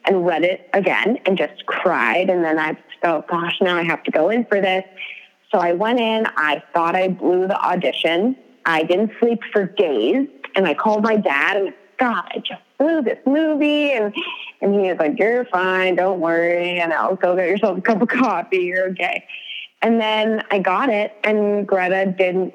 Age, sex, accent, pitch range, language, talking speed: 20-39, female, American, 175-215 Hz, English, 200 wpm